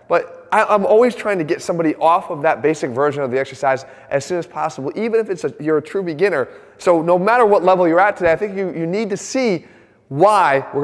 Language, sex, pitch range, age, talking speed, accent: English, male, 155-210 Hz, 30-49, 250 wpm, American